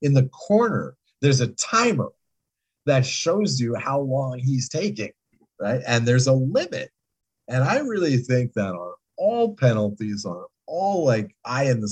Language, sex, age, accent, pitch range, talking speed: English, male, 50-69, American, 105-130 Hz, 160 wpm